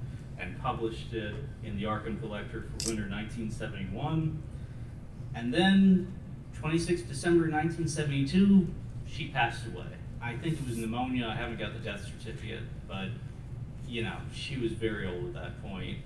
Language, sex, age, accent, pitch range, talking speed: Swedish, male, 40-59, American, 115-150 Hz, 145 wpm